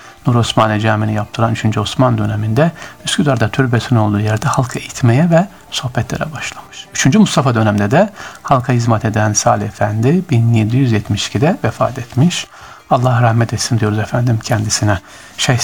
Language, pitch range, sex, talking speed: Turkish, 115-150 Hz, male, 135 wpm